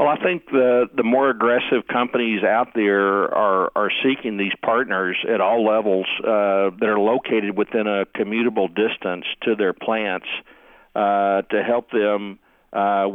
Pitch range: 100-120 Hz